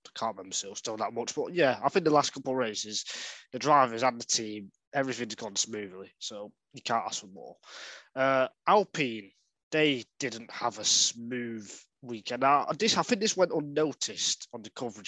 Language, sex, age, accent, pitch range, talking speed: English, male, 20-39, British, 110-145 Hz, 185 wpm